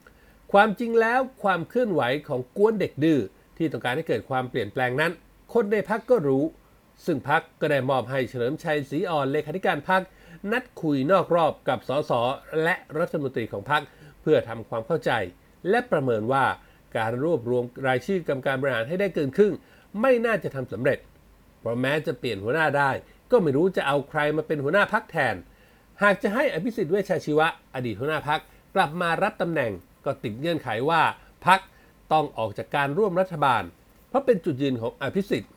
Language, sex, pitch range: Thai, male, 130-190 Hz